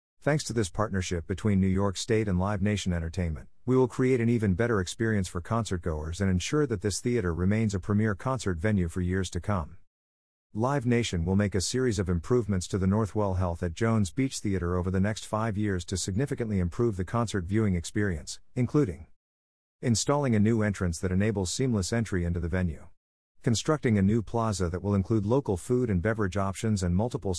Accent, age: American, 50-69